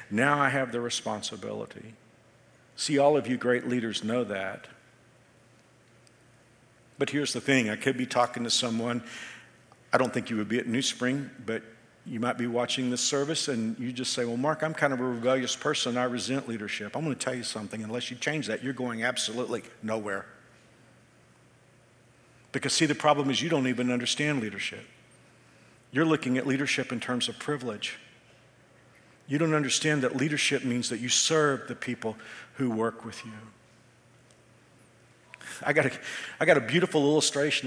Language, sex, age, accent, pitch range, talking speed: English, male, 50-69, American, 115-140 Hz, 175 wpm